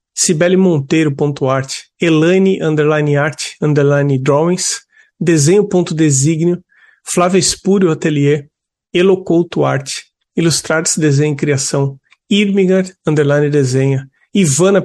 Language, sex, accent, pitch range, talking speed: Portuguese, male, Brazilian, 145-175 Hz, 95 wpm